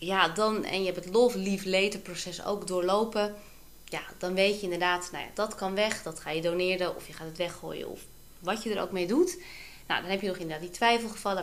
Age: 20-39